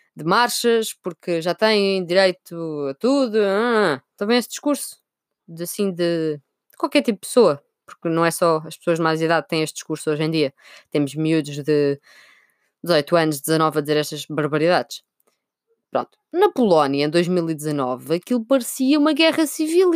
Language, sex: Portuguese, female